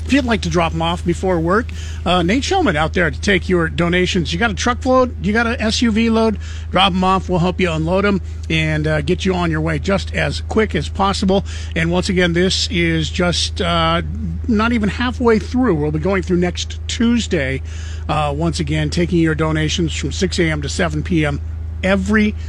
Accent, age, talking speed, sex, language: American, 50-69, 210 wpm, male, English